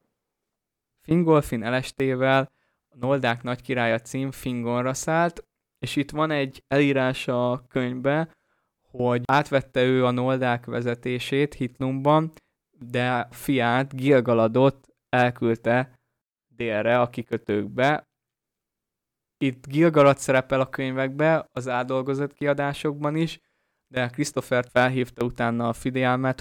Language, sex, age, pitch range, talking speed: Hungarian, male, 20-39, 120-140 Hz, 100 wpm